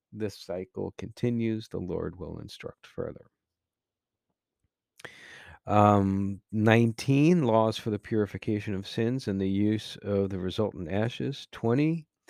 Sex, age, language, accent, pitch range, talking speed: male, 40-59, English, American, 100-120 Hz, 115 wpm